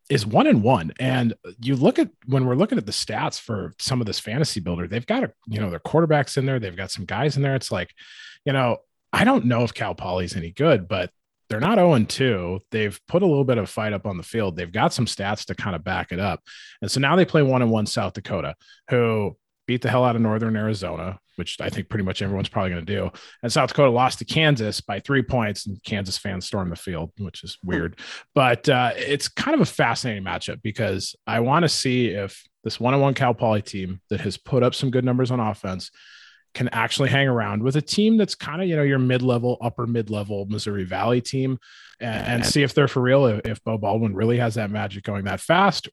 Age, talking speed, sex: 30-49, 240 wpm, male